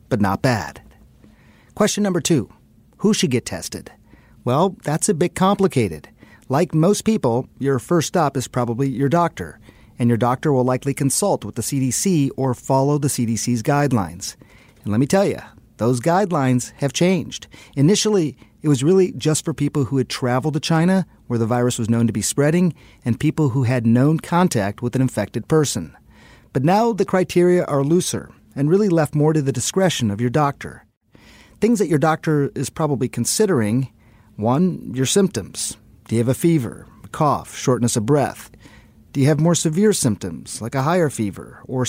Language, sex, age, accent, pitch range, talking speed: English, male, 40-59, American, 120-165 Hz, 180 wpm